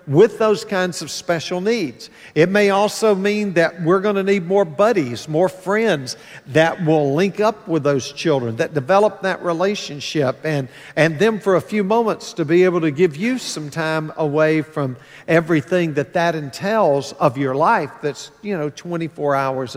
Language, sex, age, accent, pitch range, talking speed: English, male, 50-69, American, 150-195 Hz, 175 wpm